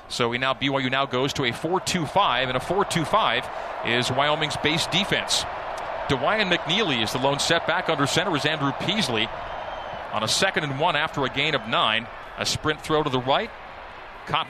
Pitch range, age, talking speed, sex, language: 130-160 Hz, 40-59, 180 wpm, male, English